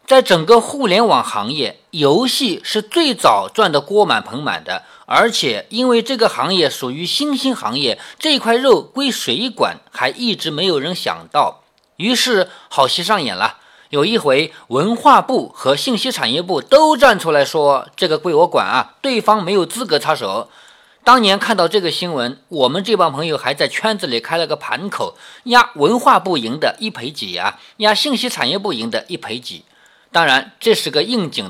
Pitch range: 175-255 Hz